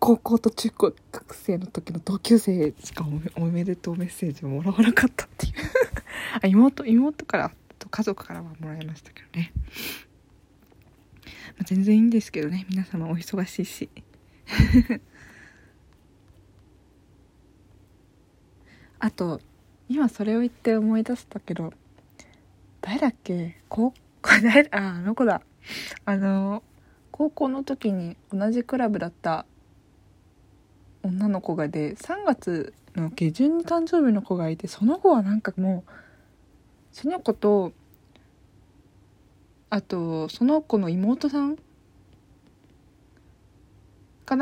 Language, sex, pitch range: Japanese, female, 155-235 Hz